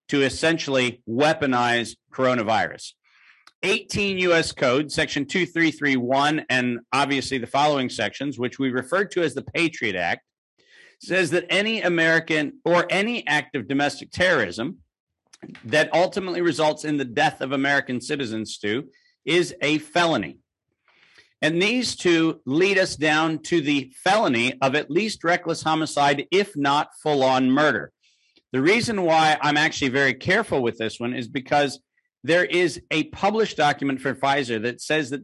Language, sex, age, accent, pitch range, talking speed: English, male, 50-69, American, 130-165 Hz, 145 wpm